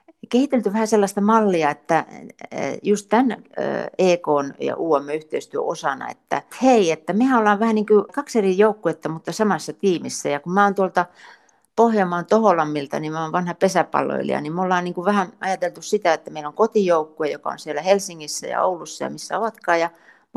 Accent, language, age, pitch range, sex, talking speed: native, Finnish, 60-79, 155-205 Hz, female, 175 wpm